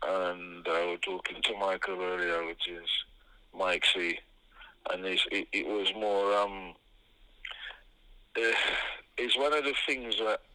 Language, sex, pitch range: English, male, 95-110 Hz